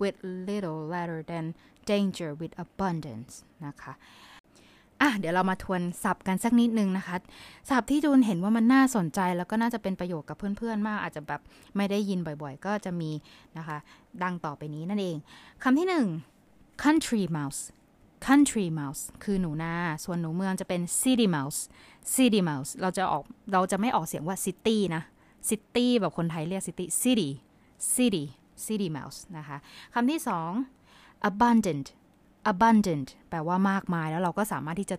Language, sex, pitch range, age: Thai, female, 165-205 Hz, 20-39